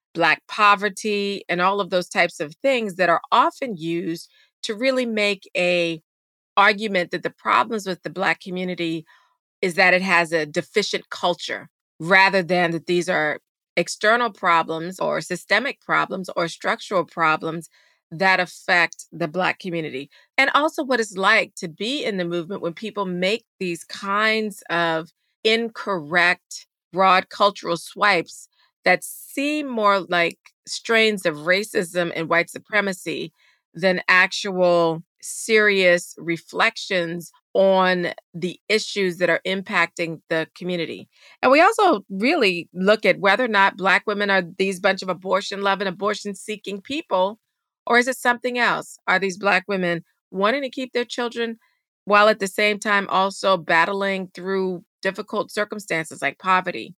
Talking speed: 145 wpm